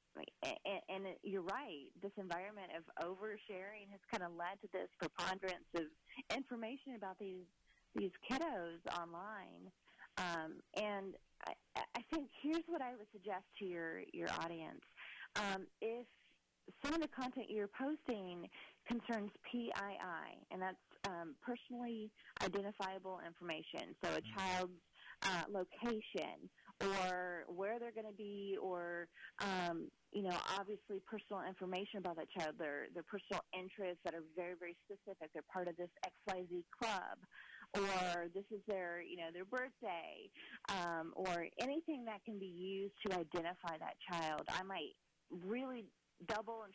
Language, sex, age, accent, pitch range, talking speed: English, female, 30-49, American, 175-220 Hz, 140 wpm